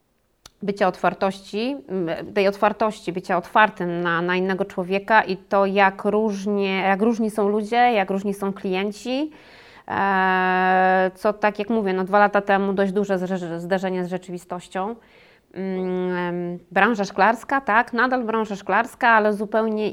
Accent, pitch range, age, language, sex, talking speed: native, 185-220 Hz, 20-39, Polish, female, 125 wpm